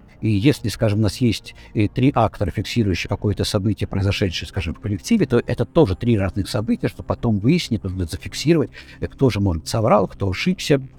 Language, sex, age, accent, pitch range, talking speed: Russian, male, 60-79, native, 95-130 Hz, 175 wpm